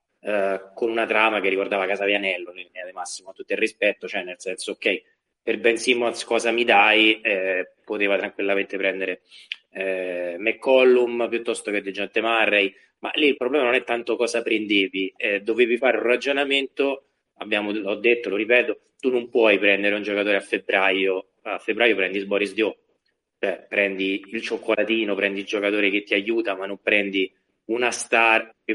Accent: native